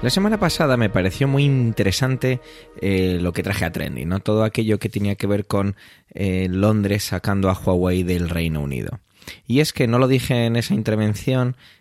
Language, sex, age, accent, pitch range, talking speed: Spanish, male, 20-39, Spanish, 100-130 Hz, 195 wpm